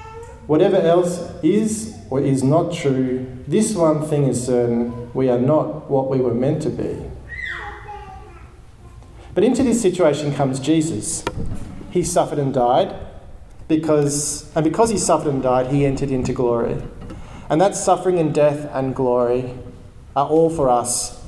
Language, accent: English, Australian